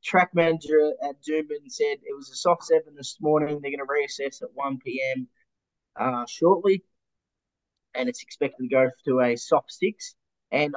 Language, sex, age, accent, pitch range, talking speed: English, male, 20-39, Australian, 125-170 Hz, 175 wpm